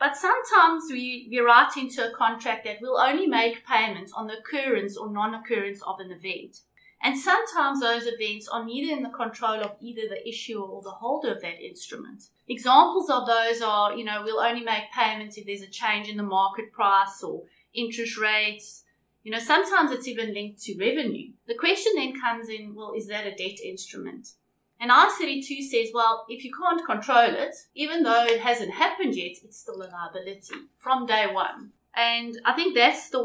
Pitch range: 215-280 Hz